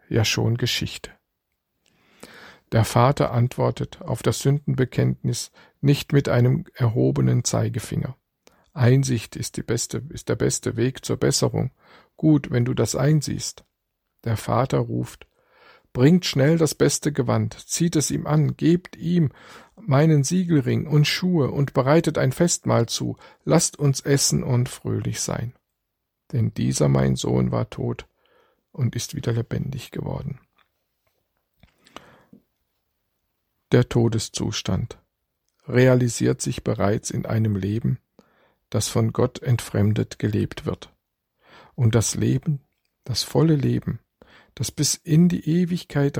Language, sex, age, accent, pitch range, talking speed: German, male, 50-69, German, 110-145 Hz, 120 wpm